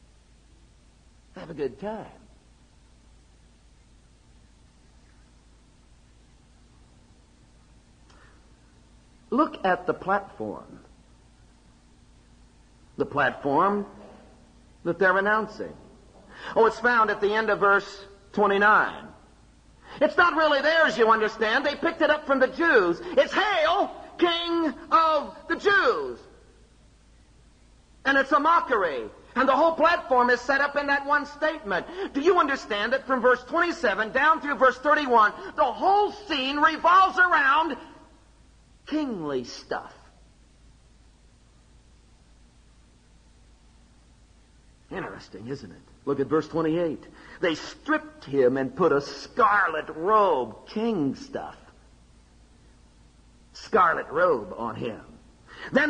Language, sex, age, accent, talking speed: English, male, 50-69, American, 105 wpm